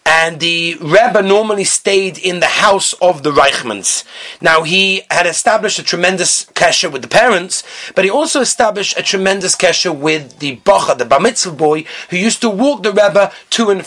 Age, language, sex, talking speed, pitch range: 30-49, English, male, 185 wpm, 180-245 Hz